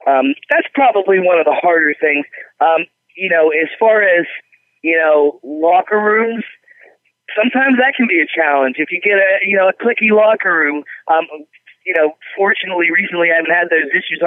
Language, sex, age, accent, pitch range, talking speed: English, male, 20-39, American, 150-185 Hz, 185 wpm